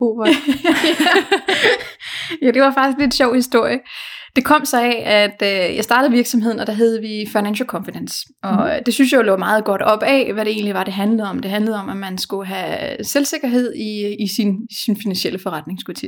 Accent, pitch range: native, 205-255 Hz